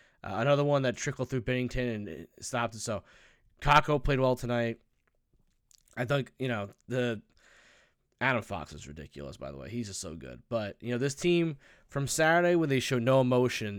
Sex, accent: male, American